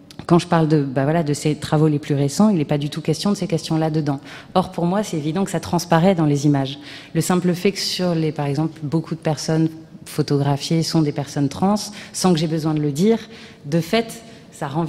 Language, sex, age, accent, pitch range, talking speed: French, female, 30-49, French, 145-170 Hz, 240 wpm